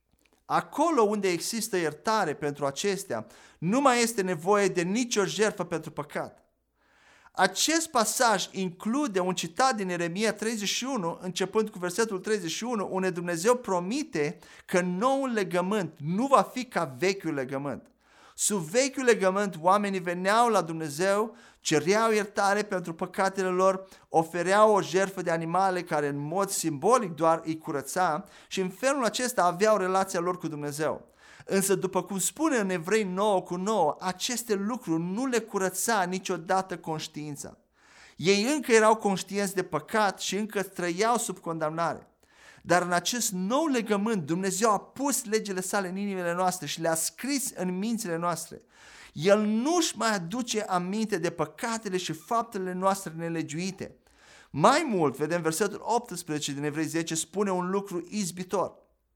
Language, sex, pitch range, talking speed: Romanian, male, 175-220 Hz, 145 wpm